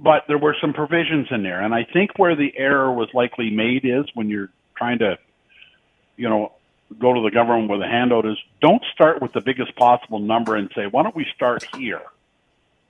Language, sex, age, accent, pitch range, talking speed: English, male, 50-69, American, 125-160 Hz, 210 wpm